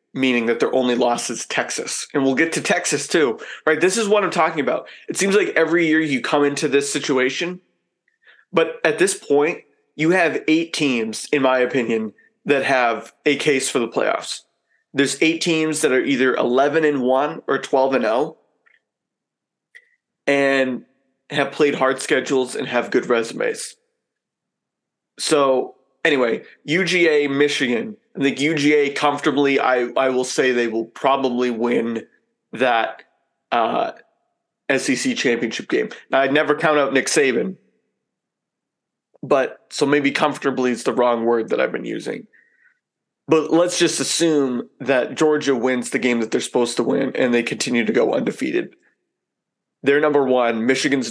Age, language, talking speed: 30-49, English, 155 wpm